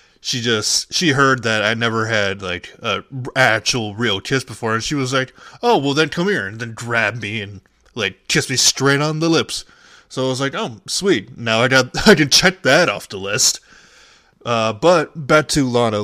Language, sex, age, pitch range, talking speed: English, male, 20-39, 105-130 Hz, 210 wpm